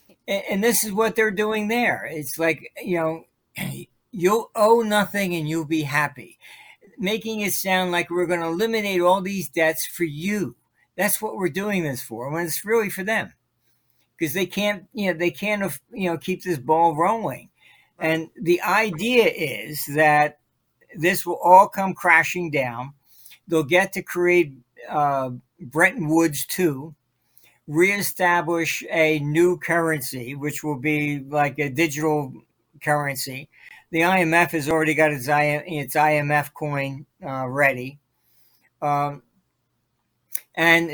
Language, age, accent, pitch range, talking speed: English, 60-79, American, 150-185 Hz, 140 wpm